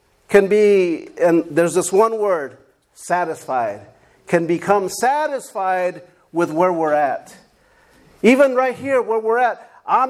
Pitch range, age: 190-250 Hz, 50-69